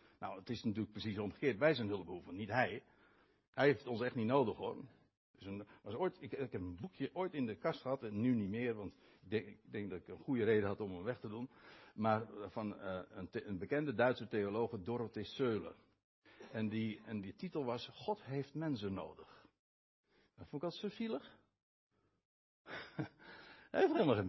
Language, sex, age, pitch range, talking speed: Dutch, male, 60-79, 110-180 Hz, 200 wpm